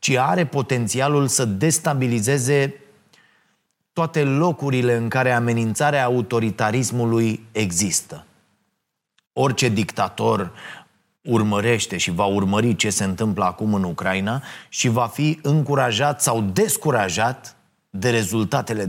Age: 30-49